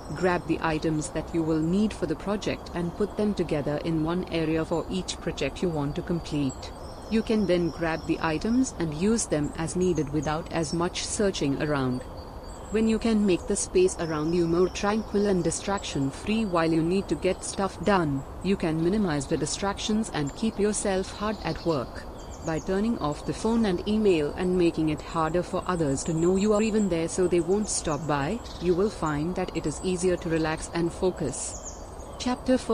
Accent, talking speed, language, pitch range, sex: native, 195 wpm, Hindi, 155-195 Hz, female